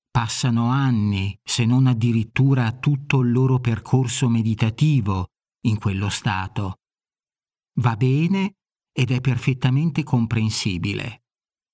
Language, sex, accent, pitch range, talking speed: Italian, male, native, 115-140 Hz, 95 wpm